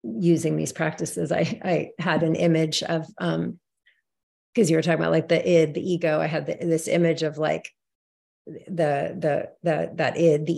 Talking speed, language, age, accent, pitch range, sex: 185 wpm, English, 30-49, American, 145-170 Hz, female